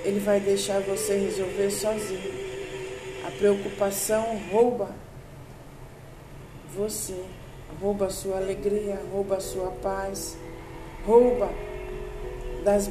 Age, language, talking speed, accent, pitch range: 50-69, Portuguese, 95 wpm, Brazilian, 190-220 Hz